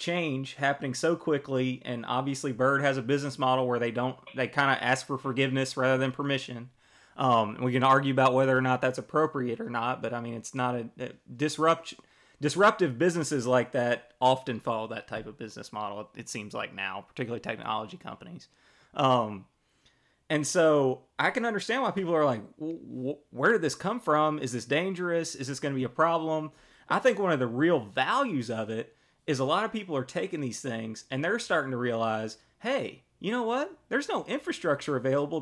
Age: 30-49